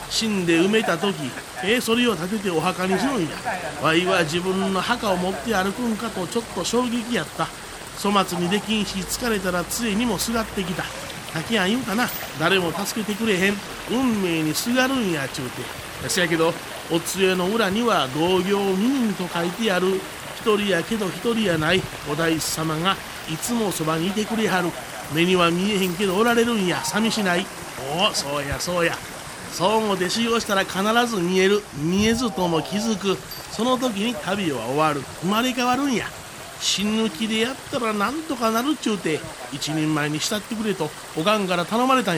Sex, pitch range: male, 165-220 Hz